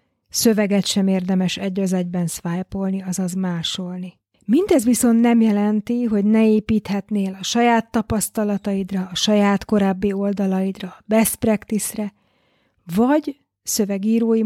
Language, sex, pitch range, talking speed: Hungarian, female, 195-235 Hz, 115 wpm